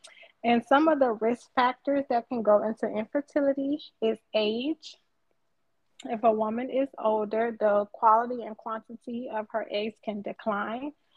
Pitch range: 215-255 Hz